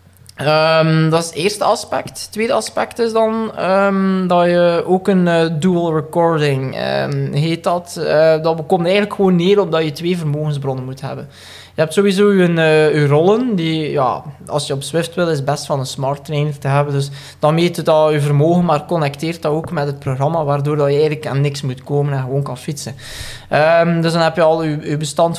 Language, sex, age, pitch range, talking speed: Dutch, male, 20-39, 140-165 Hz, 210 wpm